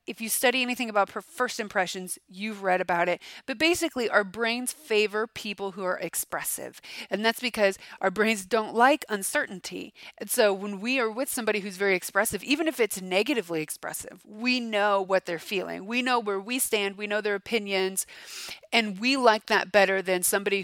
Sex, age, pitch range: female, 30-49, 190-240 Hz